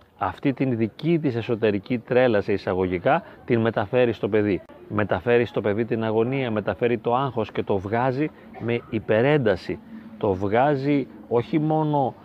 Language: Greek